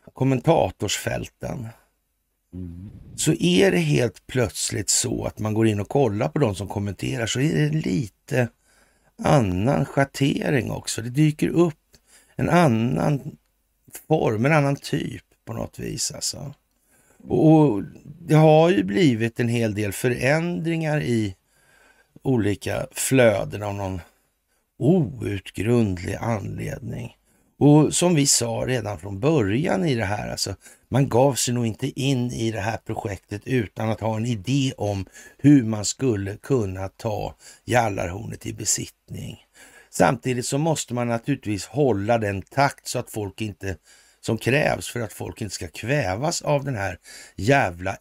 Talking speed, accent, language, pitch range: 140 wpm, native, Swedish, 100-145 Hz